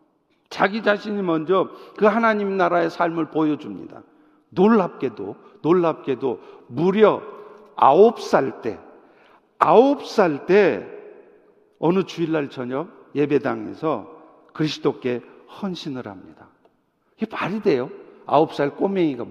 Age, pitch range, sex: 50-69, 160-250 Hz, male